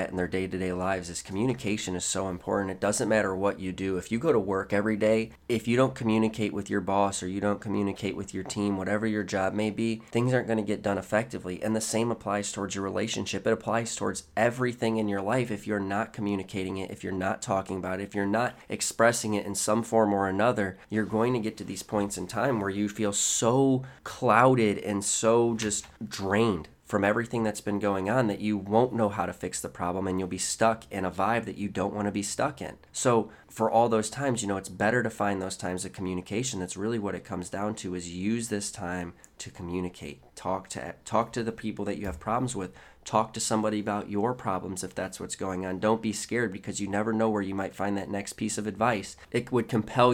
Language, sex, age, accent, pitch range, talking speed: English, male, 20-39, American, 95-110 Hz, 240 wpm